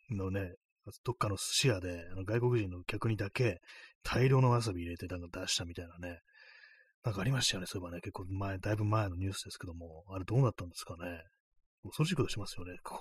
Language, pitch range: Japanese, 90-120 Hz